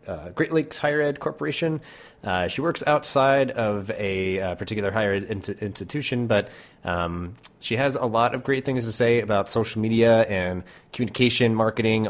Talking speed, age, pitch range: 170 wpm, 30-49, 90-110 Hz